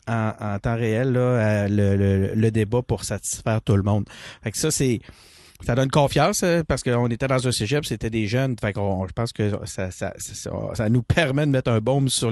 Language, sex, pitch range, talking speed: French, male, 110-135 Hz, 225 wpm